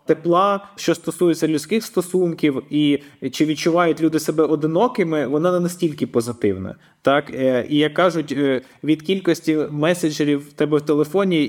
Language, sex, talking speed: Ukrainian, male, 135 wpm